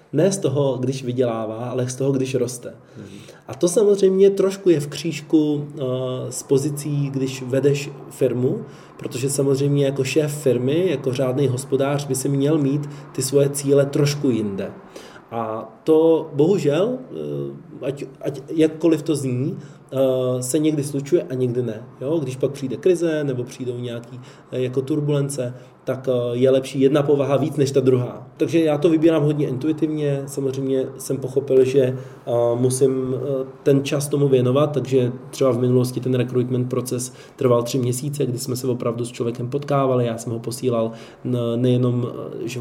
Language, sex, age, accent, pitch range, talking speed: Czech, male, 20-39, native, 125-140 Hz, 155 wpm